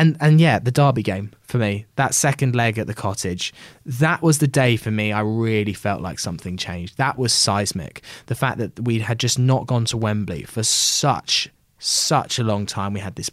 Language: English